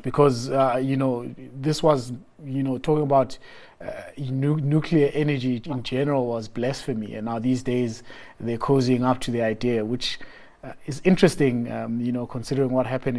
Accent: South African